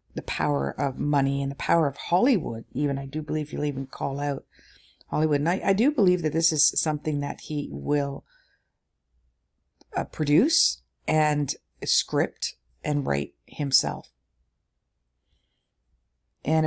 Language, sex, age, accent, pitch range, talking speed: English, female, 50-69, American, 125-175 Hz, 135 wpm